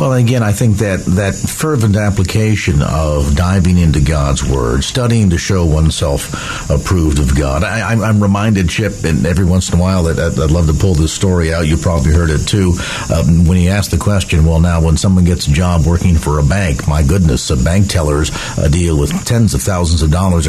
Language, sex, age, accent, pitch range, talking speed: English, male, 50-69, American, 85-115 Hz, 220 wpm